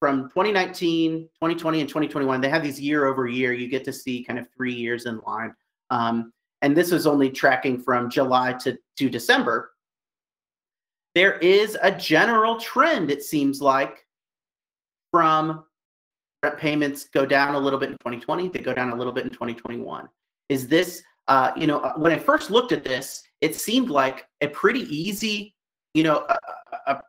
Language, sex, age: English, male, 30-49